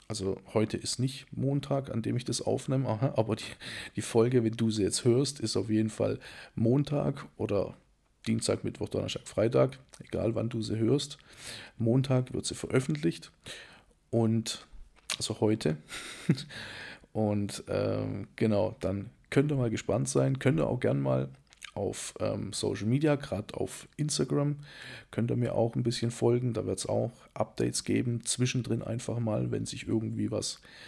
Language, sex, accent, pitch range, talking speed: German, male, German, 105-125 Hz, 160 wpm